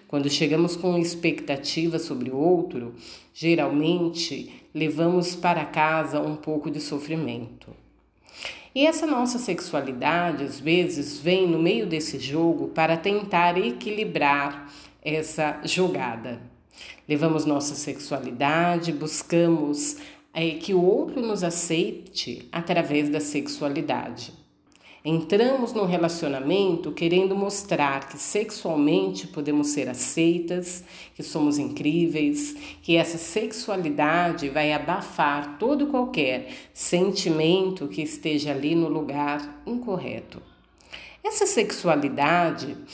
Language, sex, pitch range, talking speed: Portuguese, female, 145-180 Hz, 100 wpm